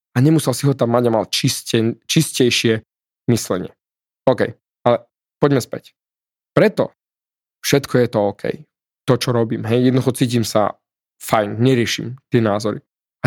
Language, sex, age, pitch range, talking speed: Slovak, male, 20-39, 120-150 Hz, 140 wpm